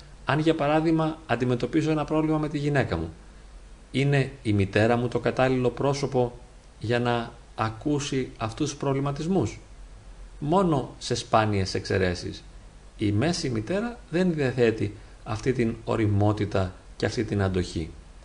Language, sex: Greek, male